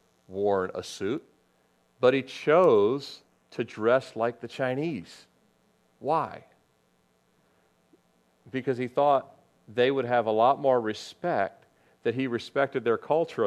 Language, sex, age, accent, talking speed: English, male, 40-59, American, 120 wpm